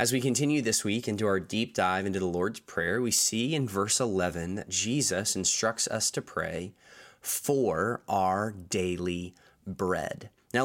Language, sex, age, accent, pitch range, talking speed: English, male, 20-39, American, 95-130 Hz, 165 wpm